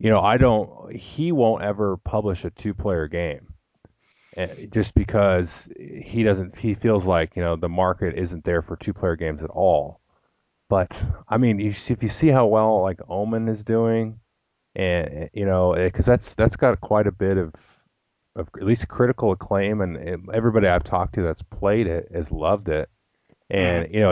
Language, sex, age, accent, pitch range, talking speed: English, male, 30-49, American, 85-105 Hz, 175 wpm